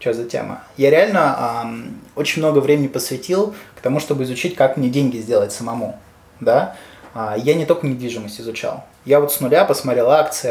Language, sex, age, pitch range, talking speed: Russian, male, 20-39, 125-180 Hz, 175 wpm